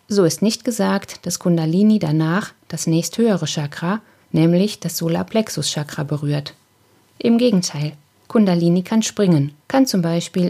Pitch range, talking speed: 155-205 Hz, 125 wpm